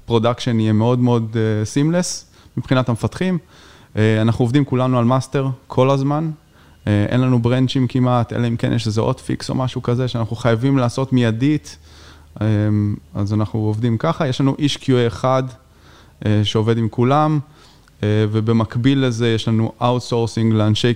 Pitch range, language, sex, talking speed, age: 105-130 Hz, Hebrew, male, 145 wpm, 20-39